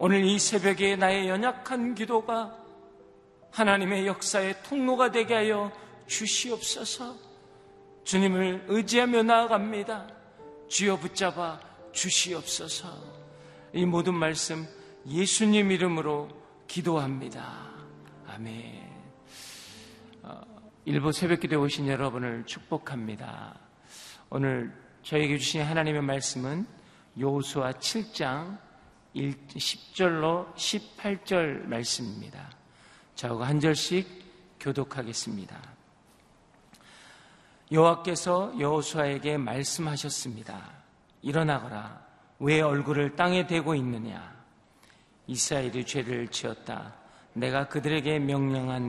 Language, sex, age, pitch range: Korean, male, 40-59, 130-190 Hz